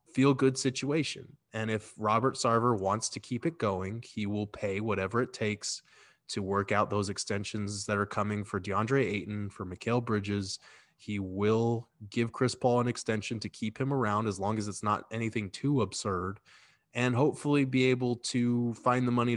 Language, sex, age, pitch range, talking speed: English, male, 20-39, 100-120 Hz, 185 wpm